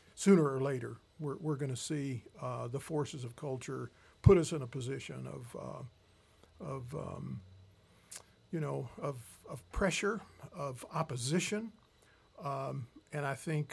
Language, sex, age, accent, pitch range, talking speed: English, male, 50-69, American, 130-165 Hz, 145 wpm